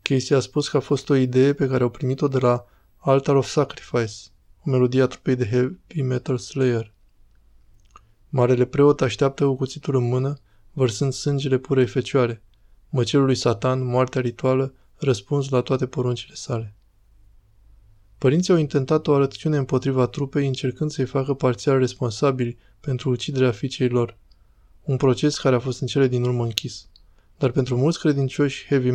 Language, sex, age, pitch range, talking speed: Romanian, male, 20-39, 120-140 Hz, 160 wpm